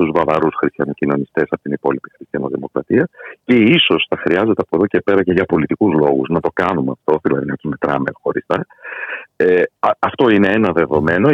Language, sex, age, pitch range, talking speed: Greek, male, 50-69, 75-125 Hz, 165 wpm